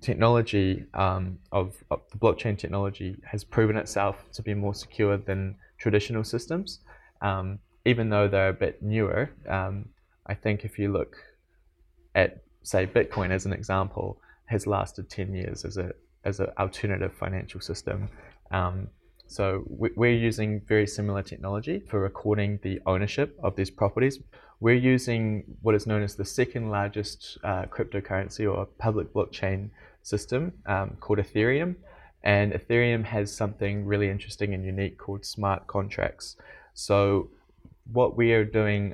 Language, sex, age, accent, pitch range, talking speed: English, male, 20-39, Australian, 100-110 Hz, 145 wpm